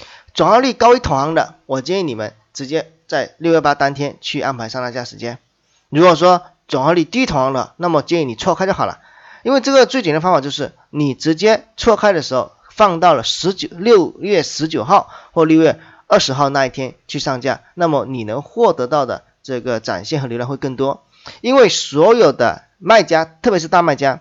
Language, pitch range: Chinese, 130-175 Hz